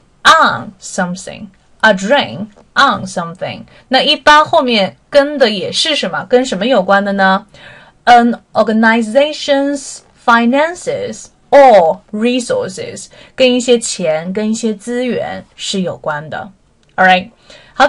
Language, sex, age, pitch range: Chinese, female, 30-49, 190-270 Hz